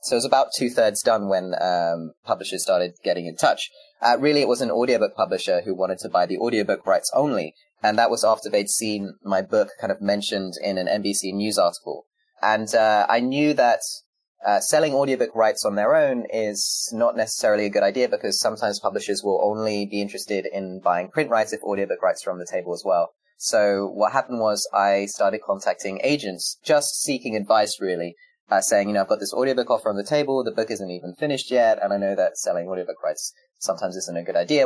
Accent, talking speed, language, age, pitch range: British, 215 wpm, English, 30-49, 100-155 Hz